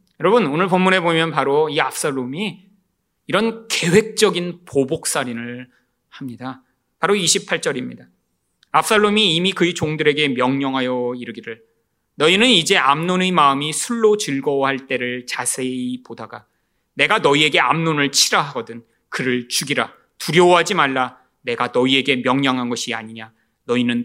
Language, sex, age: Korean, male, 30-49